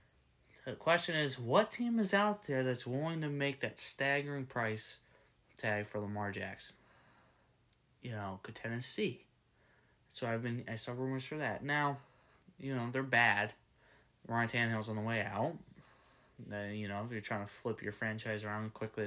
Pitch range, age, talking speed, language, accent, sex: 110-135 Hz, 20-39, 170 wpm, English, American, male